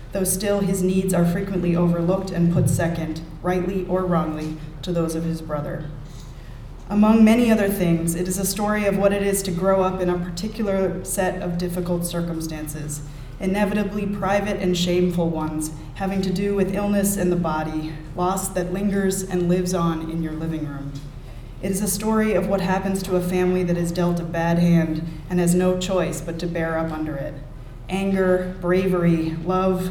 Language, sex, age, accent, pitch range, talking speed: English, female, 30-49, American, 160-190 Hz, 185 wpm